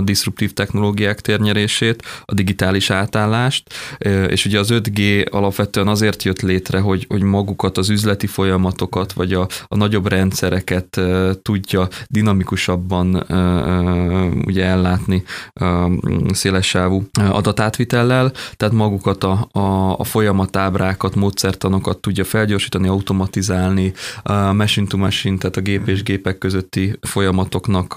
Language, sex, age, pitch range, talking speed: Hungarian, male, 20-39, 95-105 Hz, 110 wpm